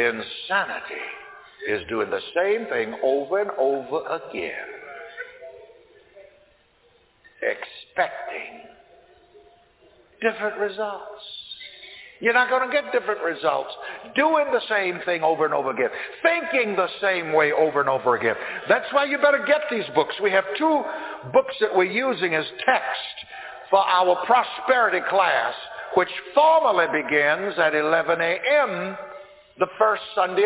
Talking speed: 130 wpm